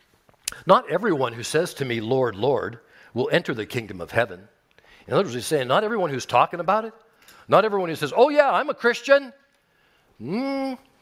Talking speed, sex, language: 190 wpm, male, English